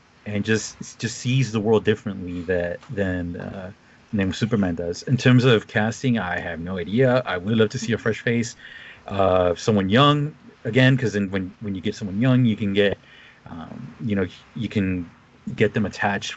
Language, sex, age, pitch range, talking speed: English, male, 30-49, 100-125 Hz, 185 wpm